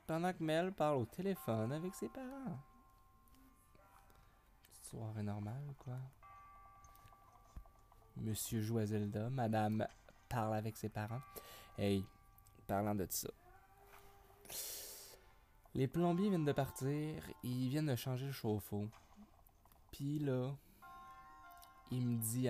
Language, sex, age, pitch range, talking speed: French, male, 20-39, 100-130 Hz, 105 wpm